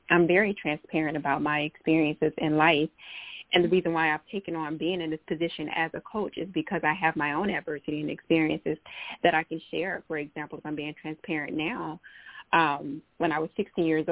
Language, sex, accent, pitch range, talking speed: English, female, American, 155-190 Hz, 205 wpm